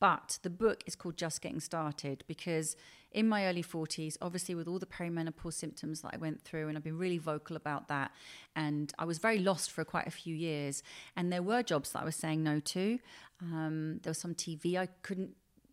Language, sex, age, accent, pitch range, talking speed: English, female, 40-59, British, 165-210 Hz, 220 wpm